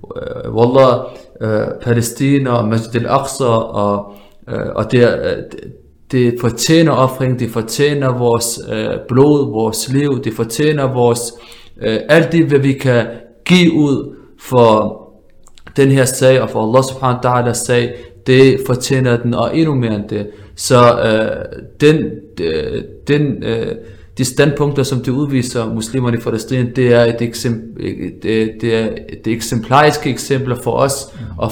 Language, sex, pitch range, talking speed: Danish, male, 110-135 Hz, 145 wpm